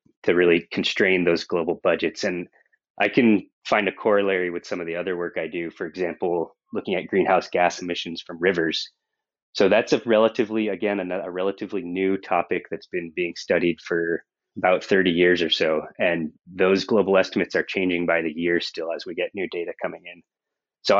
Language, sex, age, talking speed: English, male, 20-39, 190 wpm